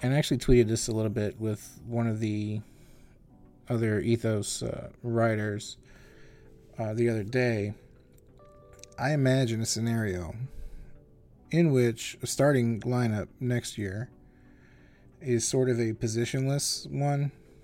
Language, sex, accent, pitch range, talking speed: English, male, American, 110-125 Hz, 125 wpm